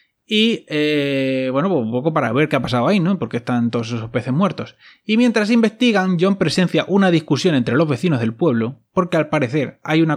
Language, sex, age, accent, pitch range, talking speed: Spanish, male, 20-39, Spanish, 130-180 Hz, 205 wpm